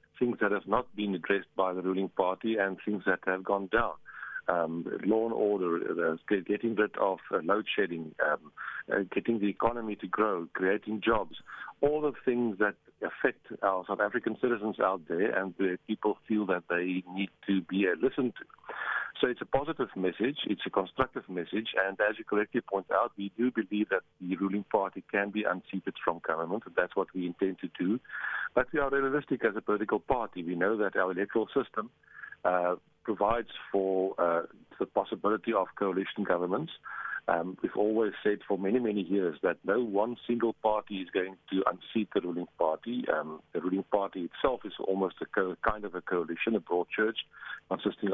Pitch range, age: 95-110 Hz, 50-69